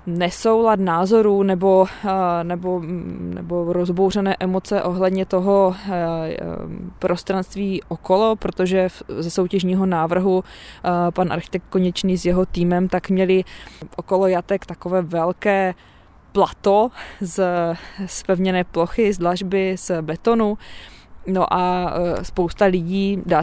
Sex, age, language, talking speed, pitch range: female, 20-39, Czech, 100 wpm, 170-190 Hz